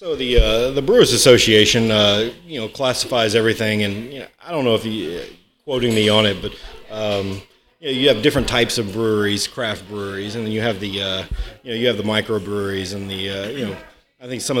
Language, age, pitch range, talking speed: English, 40-59, 100-115 Hz, 230 wpm